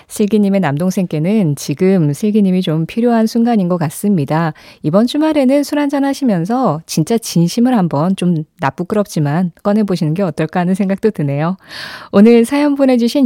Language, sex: Korean, female